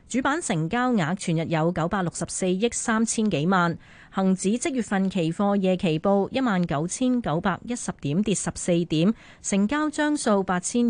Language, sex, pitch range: Chinese, female, 175-235 Hz